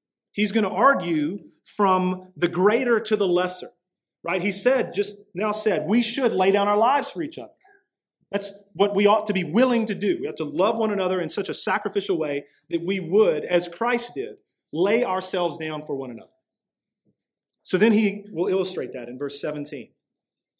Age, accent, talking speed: 40-59, American, 190 wpm